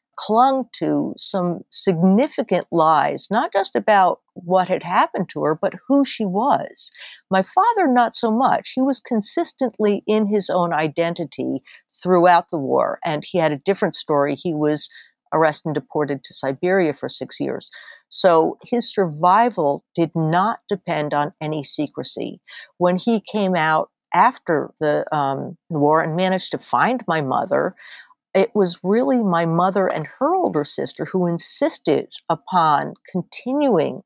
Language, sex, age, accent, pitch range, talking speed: English, female, 50-69, American, 155-205 Hz, 150 wpm